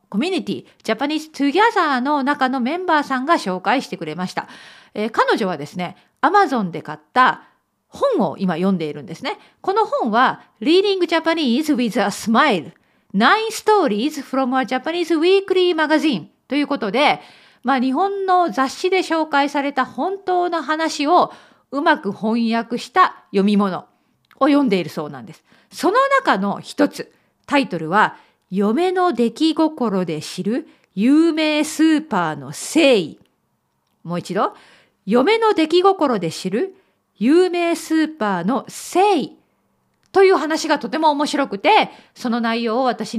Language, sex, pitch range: Japanese, female, 200-320 Hz